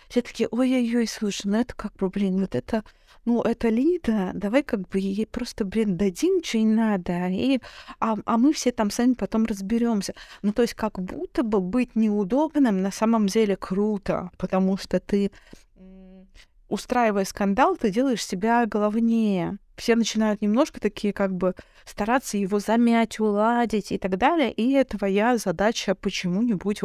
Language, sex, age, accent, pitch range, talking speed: Russian, female, 20-39, native, 200-235 Hz, 155 wpm